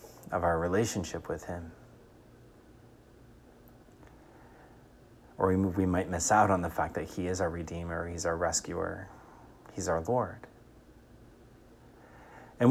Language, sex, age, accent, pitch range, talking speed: English, male, 30-49, American, 90-110 Hz, 120 wpm